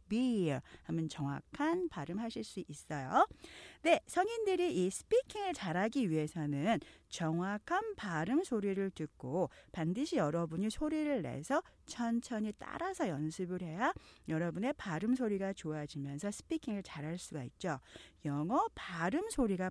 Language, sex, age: Korean, female, 40-59